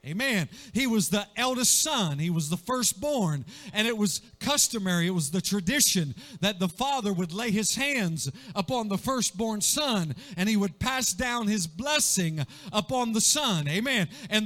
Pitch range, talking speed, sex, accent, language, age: 195-250 Hz, 170 wpm, male, American, English, 40-59